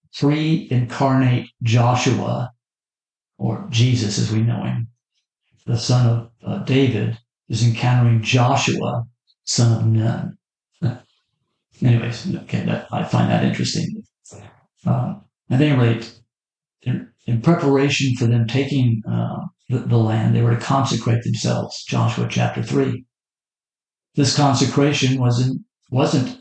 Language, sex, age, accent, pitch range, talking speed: English, male, 50-69, American, 115-135 Hz, 120 wpm